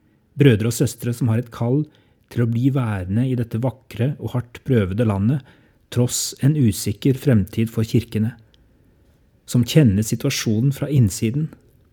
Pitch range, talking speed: 110-130 Hz, 145 wpm